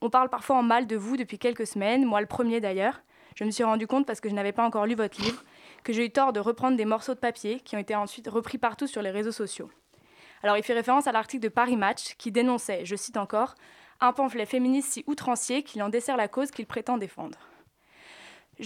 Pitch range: 215-250 Hz